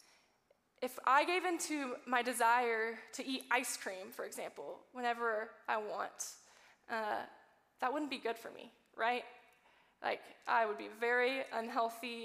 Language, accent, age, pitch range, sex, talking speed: English, American, 10-29, 230-270 Hz, female, 145 wpm